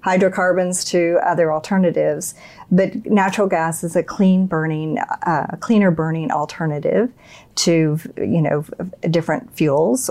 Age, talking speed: 50-69, 120 wpm